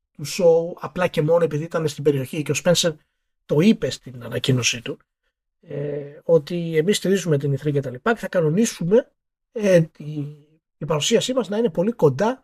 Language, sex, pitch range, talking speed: Greek, male, 150-205 Hz, 165 wpm